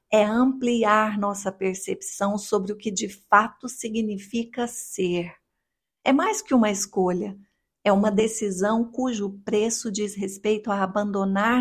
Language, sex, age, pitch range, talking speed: Portuguese, female, 50-69, 200-245 Hz, 130 wpm